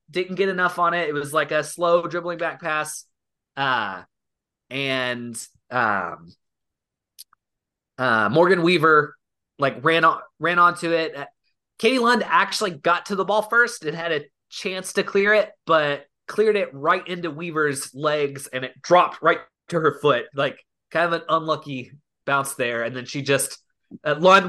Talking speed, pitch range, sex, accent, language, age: 165 wpm, 135-180 Hz, male, American, English, 20-39